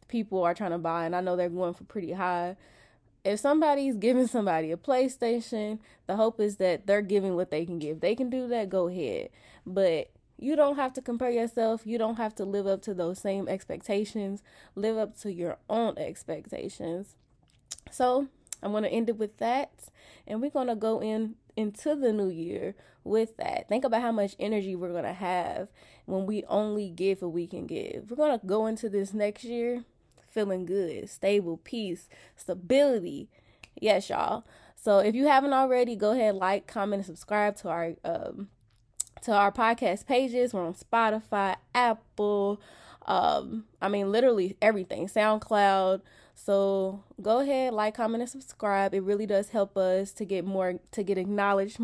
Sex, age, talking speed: female, 20-39, 180 wpm